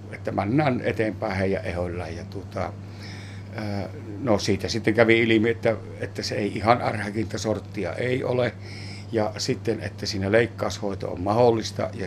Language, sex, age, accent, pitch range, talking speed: Finnish, male, 60-79, native, 100-115 Hz, 145 wpm